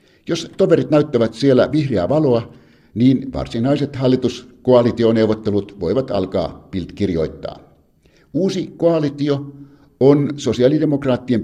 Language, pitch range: Finnish, 105-140 Hz